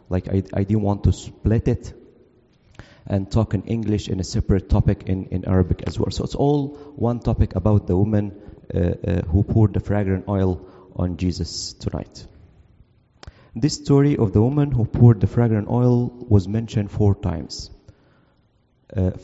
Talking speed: 170 wpm